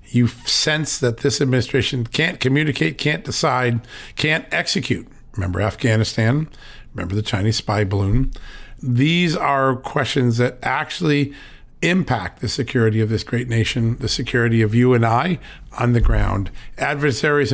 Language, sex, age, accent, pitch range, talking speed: English, male, 50-69, American, 115-145 Hz, 135 wpm